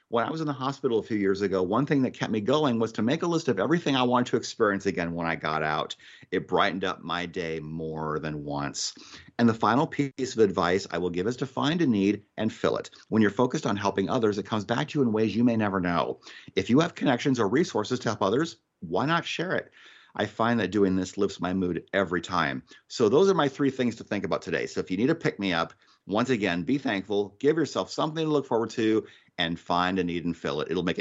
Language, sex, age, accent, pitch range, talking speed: English, male, 50-69, American, 95-130 Hz, 260 wpm